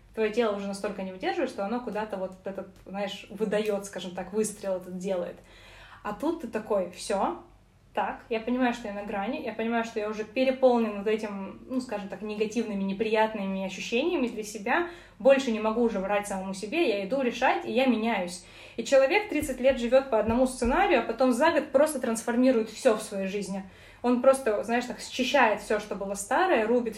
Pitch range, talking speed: 195-255 Hz, 195 wpm